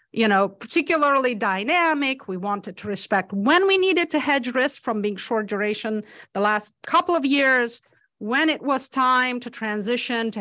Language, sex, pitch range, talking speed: English, female, 205-270 Hz, 175 wpm